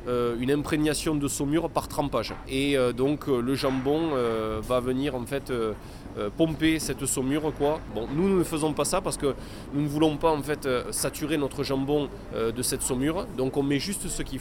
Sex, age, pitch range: male, 20-39, 115-140 Hz